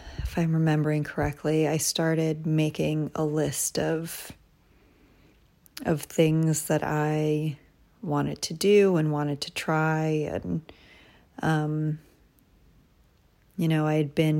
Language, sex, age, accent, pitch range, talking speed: English, female, 30-49, American, 150-160 Hz, 115 wpm